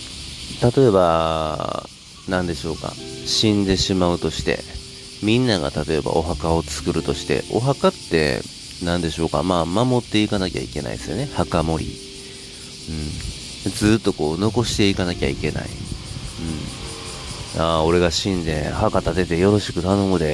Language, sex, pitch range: Japanese, male, 75-105 Hz